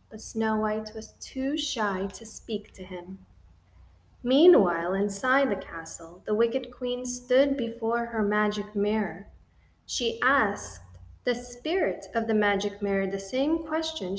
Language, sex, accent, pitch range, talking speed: English, female, American, 180-245 Hz, 135 wpm